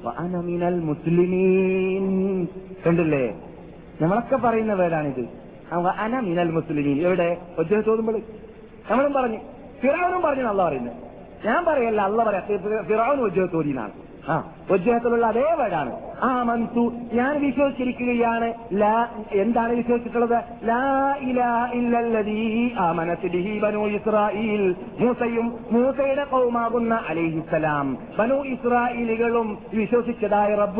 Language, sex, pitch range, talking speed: Malayalam, male, 185-240 Hz, 105 wpm